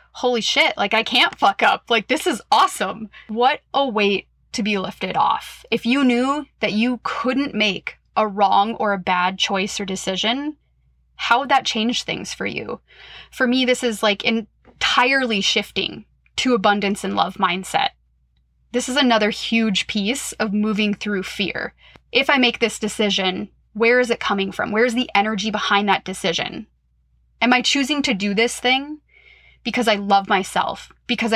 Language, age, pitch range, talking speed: English, 20-39, 190-235 Hz, 170 wpm